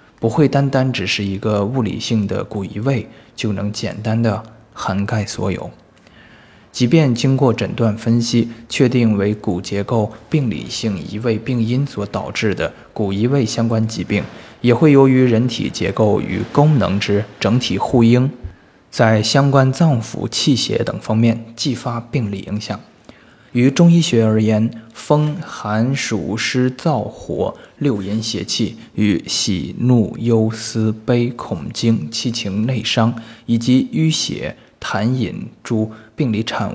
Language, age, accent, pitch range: Chinese, 20-39, native, 105-125 Hz